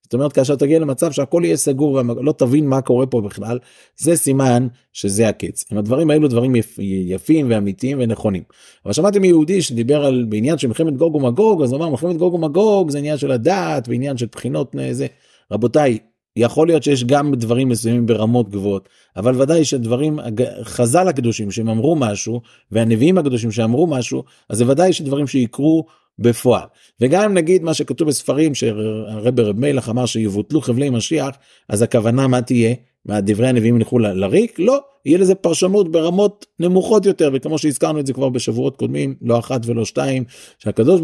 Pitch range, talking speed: 115-155 Hz, 170 wpm